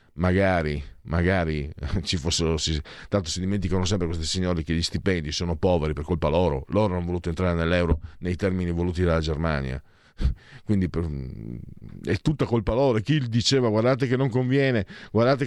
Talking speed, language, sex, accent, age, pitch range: 155 wpm, Italian, male, native, 50-69, 85-120 Hz